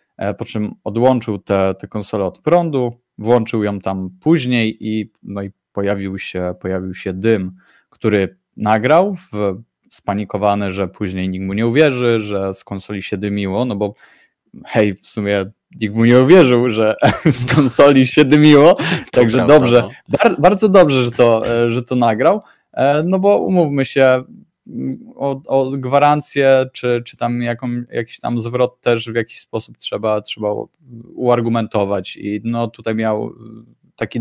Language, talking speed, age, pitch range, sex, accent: Polish, 145 wpm, 20-39, 105-130 Hz, male, native